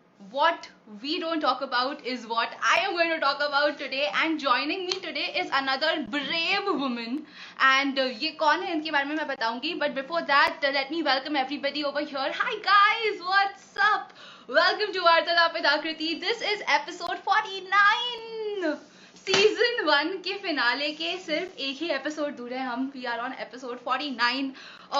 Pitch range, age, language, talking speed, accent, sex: 250-320 Hz, 20-39, Hindi, 175 wpm, native, female